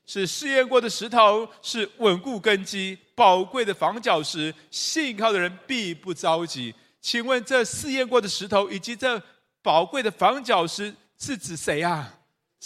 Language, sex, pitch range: Chinese, male, 180-245 Hz